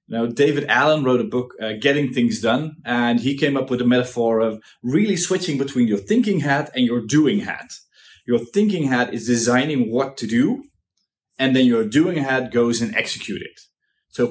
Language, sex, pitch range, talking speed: English, male, 120-155 Hz, 195 wpm